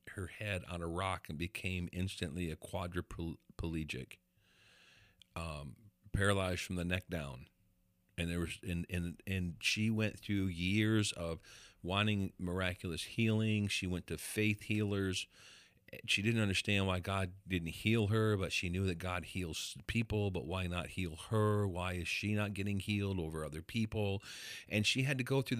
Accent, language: American, English